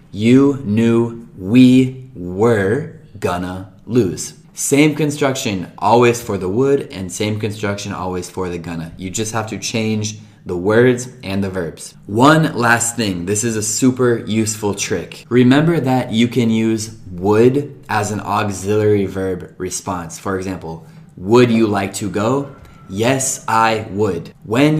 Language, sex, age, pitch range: Italian, male, 20-39, 95-125 Hz